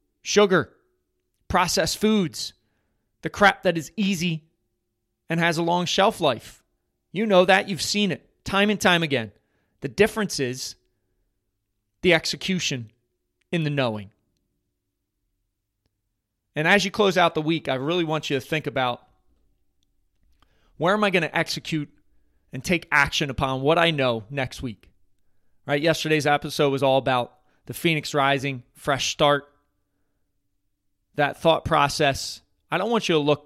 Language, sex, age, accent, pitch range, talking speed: English, male, 30-49, American, 105-160 Hz, 145 wpm